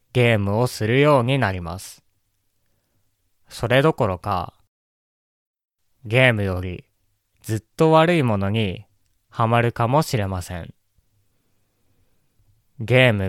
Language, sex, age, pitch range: Japanese, male, 20-39, 95-125 Hz